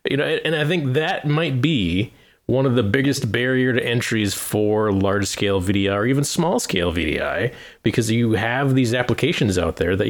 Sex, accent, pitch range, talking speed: male, American, 105-135 Hz, 180 wpm